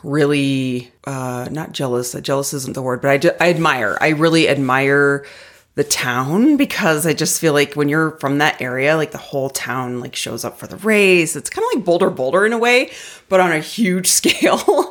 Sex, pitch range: female, 130-175 Hz